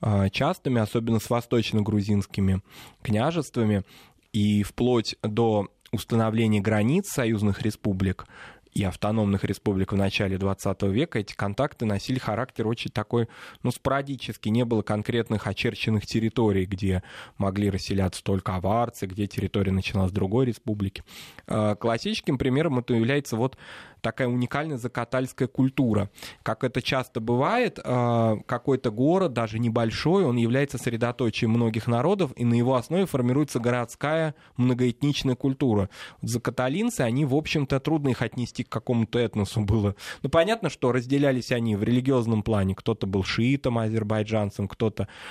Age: 20-39